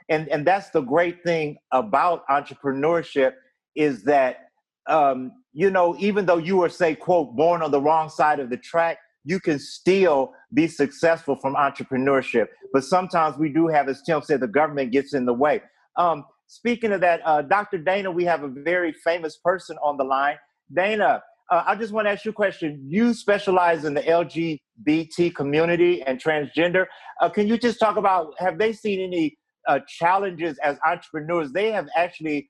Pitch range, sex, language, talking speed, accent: 145-185 Hz, male, English, 185 wpm, American